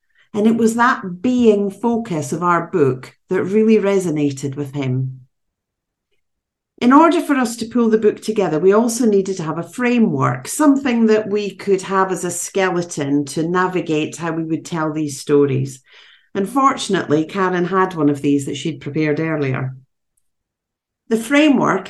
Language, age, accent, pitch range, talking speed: English, 50-69, British, 155-215 Hz, 160 wpm